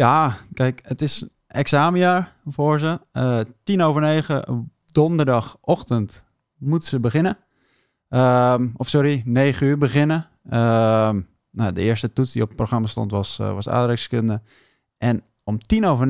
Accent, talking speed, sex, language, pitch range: Dutch, 145 wpm, male, Dutch, 115-145 Hz